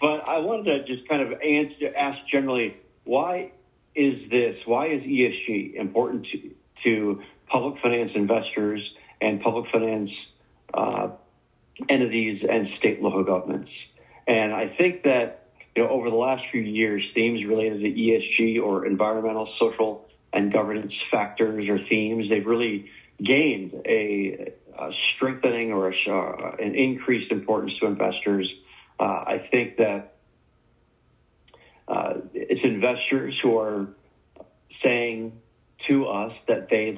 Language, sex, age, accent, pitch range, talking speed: English, male, 40-59, American, 100-120 Hz, 125 wpm